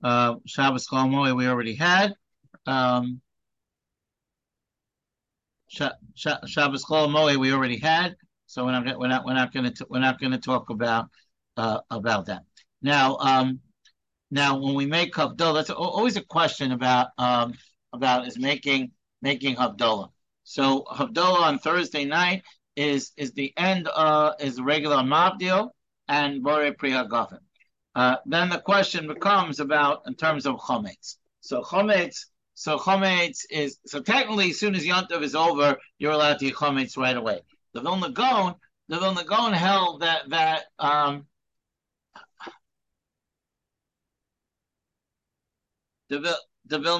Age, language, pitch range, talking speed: 60-79, English, 135-170 Hz, 125 wpm